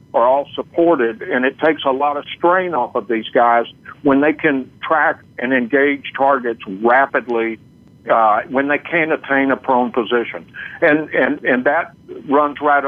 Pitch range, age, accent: 120-140 Hz, 60-79, American